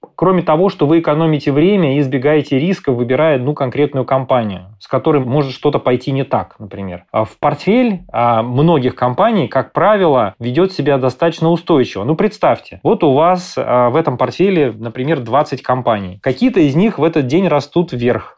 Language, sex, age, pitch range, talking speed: Russian, male, 20-39, 120-165 Hz, 165 wpm